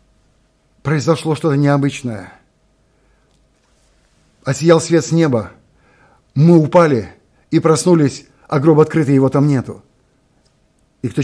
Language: Russian